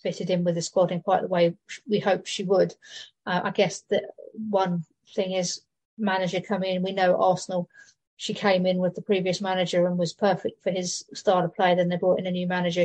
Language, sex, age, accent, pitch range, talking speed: English, female, 40-59, British, 180-205 Hz, 225 wpm